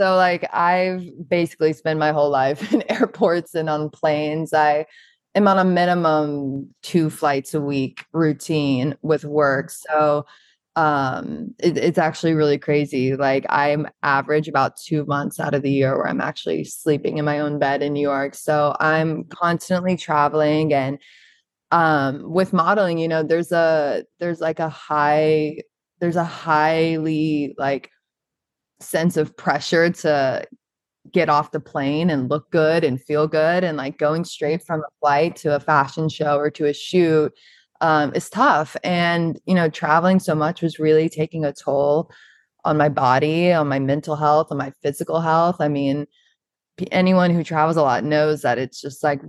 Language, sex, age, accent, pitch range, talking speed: English, female, 20-39, American, 145-165 Hz, 170 wpm